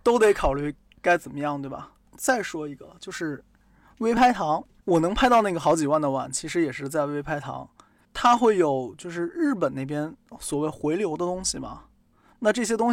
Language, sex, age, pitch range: Chinese, male, 20-39, 140-175 Hz